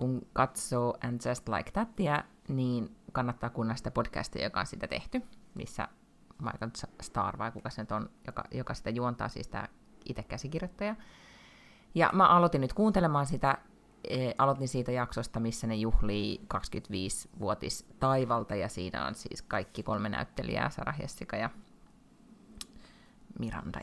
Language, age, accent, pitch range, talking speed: Finnish, 30-49, native, 115-145 Hz, 145 wpm